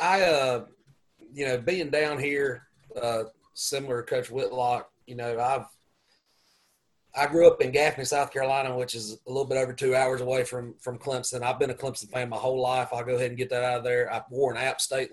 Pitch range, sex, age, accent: 125-155 Hz, male, 30-49, American